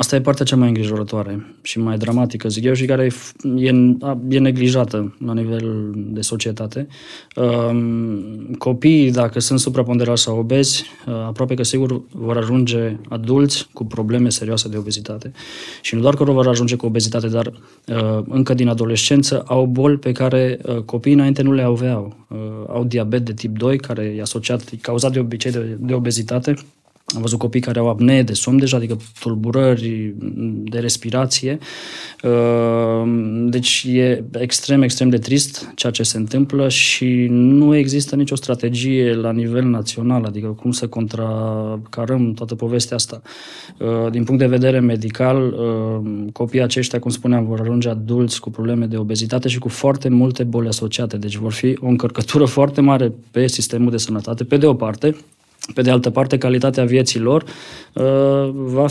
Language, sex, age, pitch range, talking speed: Romanian, male, 20-39, 115-130 Hz, 155 wpm